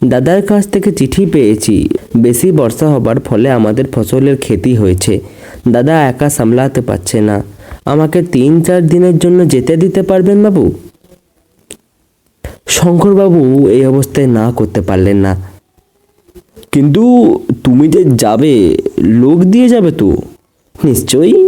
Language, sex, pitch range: Bengali, male, 105-175 Hz